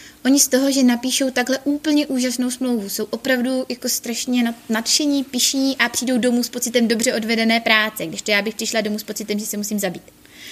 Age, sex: 20-39, female